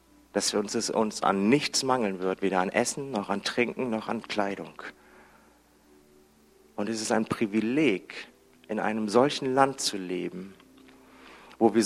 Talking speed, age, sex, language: 145 wpm, 40-59, male, German